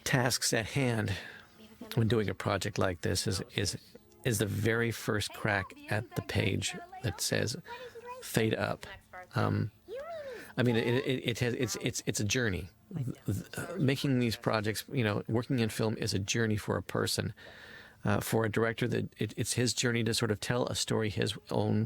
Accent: American